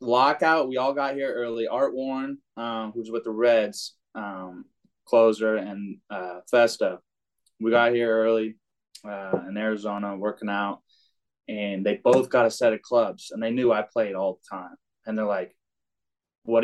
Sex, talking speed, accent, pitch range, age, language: male, 170 wpm, American, 115-140 Hz, 20-39, English